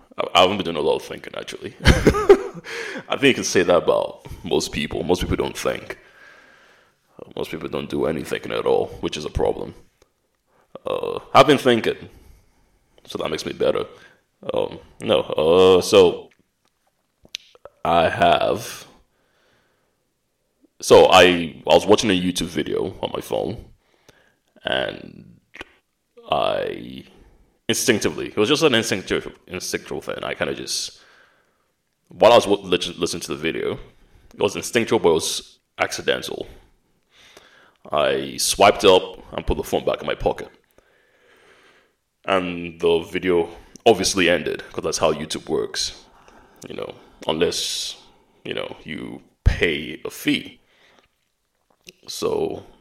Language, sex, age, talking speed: English, male, 20-39, 135 wpm